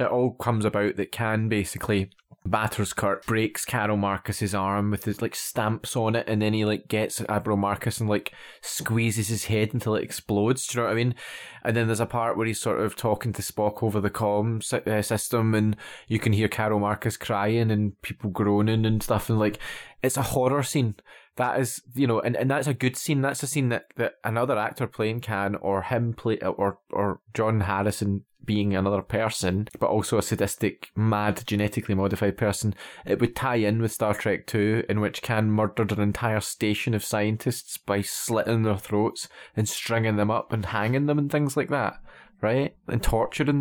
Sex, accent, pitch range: male, British, 105-125 Hz